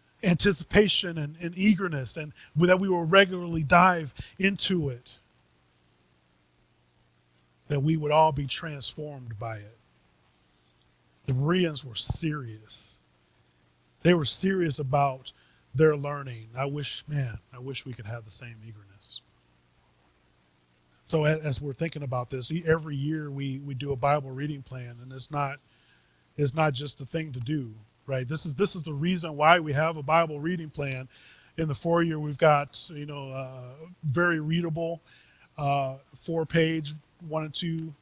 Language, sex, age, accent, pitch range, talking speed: English, male, 30-49, American, 115-155 Hz, 155 wpm